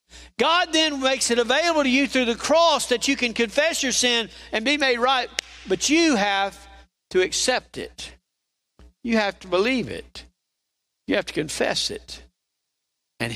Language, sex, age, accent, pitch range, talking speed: English, male, 60-79, American, 215-290 Hz, 165 wpm